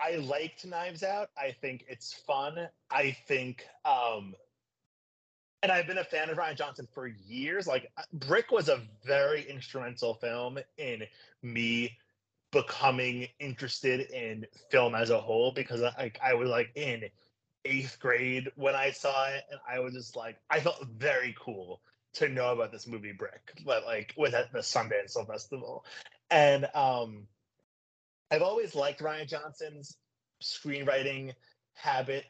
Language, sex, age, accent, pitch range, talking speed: English, male, 20-39, American, 125-165 Hz, 150 wpm